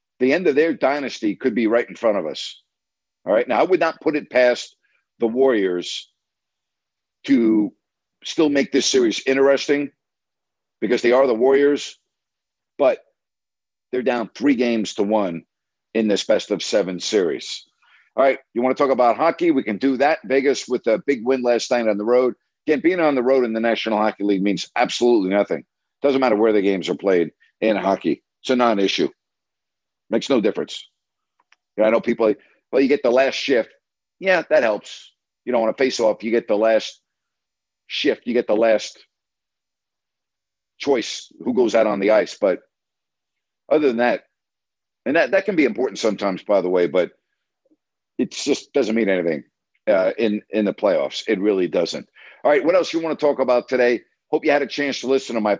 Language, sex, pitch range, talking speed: English, male, 110-135 Hz, 195 wpm